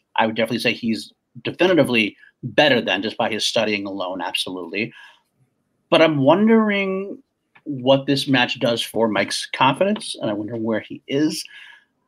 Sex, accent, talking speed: male, American, 150 wpm